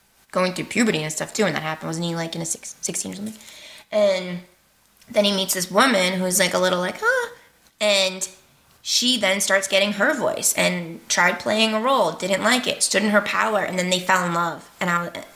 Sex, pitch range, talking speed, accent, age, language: female, 170-210 Hz, 225 wpm, American, 20-39, English